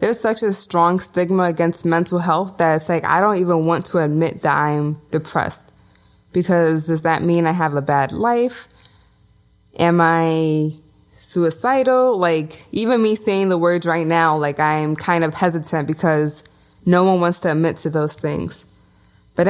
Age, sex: 20-39, female